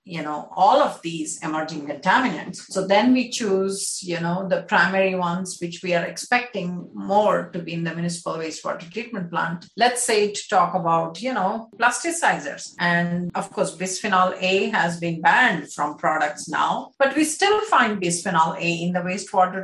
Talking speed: 175 wpm